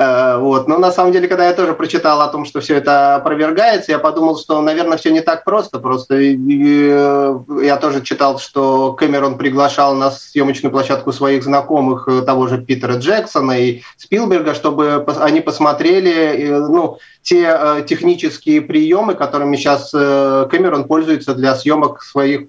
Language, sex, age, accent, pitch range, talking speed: Russian, male, 30-49, native, 130-155 Hz, 145 wpm